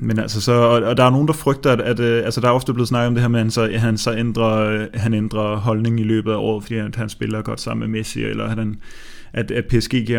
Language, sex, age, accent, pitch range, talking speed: Danish, male, 20-39, native, 115-125 Hz, 245 wpm